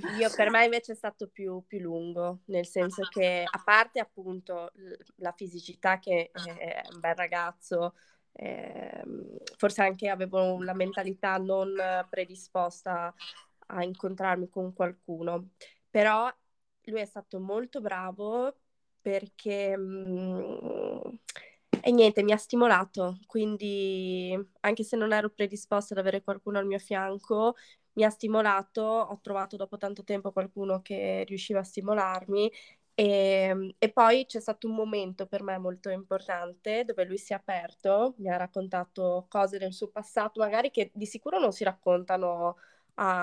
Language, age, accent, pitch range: Italian, 20-39, native, 185-215 Hz